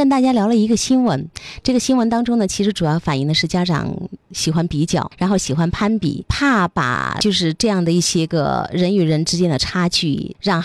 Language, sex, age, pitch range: Chinese, female, 30-49, 155-215 Hz